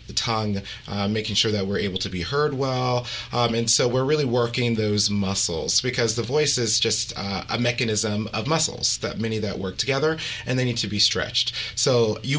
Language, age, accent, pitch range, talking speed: English, 30-49, American, 100-120 Hz, 215 wpm